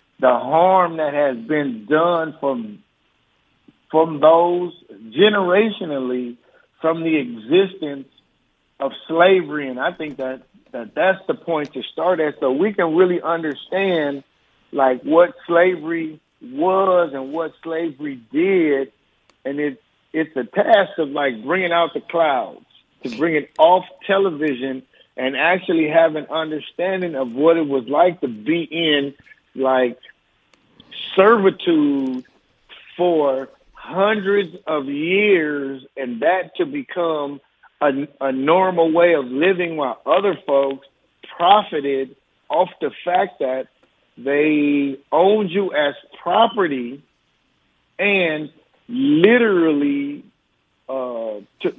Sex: male